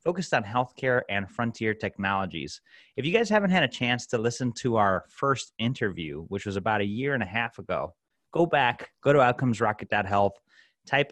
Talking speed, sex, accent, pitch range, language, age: 185 wpm, male, American, 100-125 Hz, English, 30-49